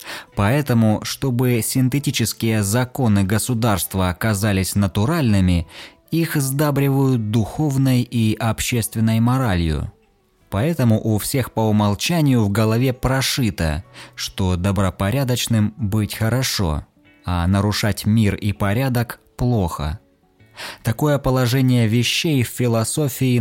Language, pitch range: Russian, 95-125 Hz